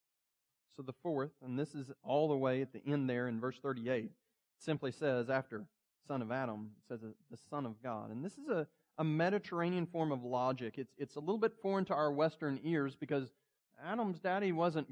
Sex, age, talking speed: male, 30-49, 205 wpm